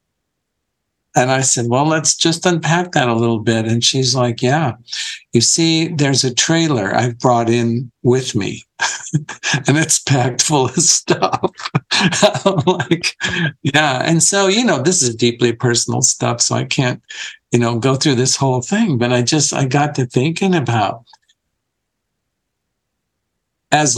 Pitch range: 120-155 Hz